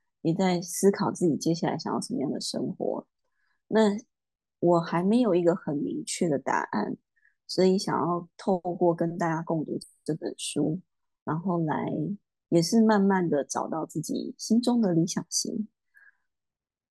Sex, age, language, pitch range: female, 20-39, Chinese, 165-220 Hz